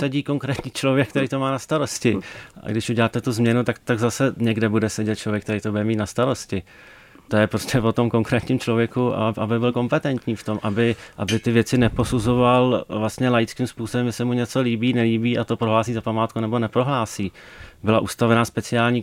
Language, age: Czech, 30-49